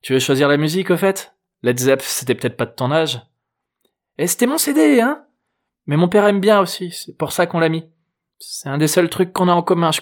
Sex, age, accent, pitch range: male, 20-39, French, 120-180 Hz